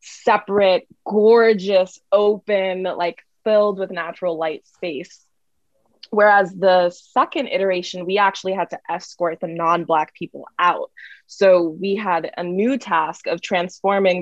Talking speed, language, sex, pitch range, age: 125 wpm, English, female, 175-220 Hz, 20-39